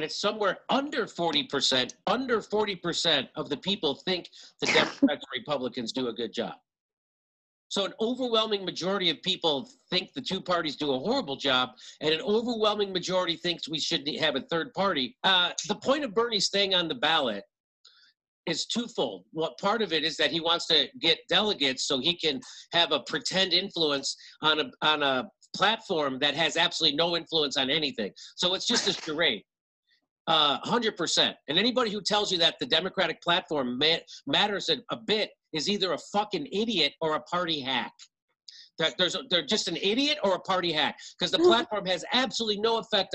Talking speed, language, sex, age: 185 wpm, English, male, 50-69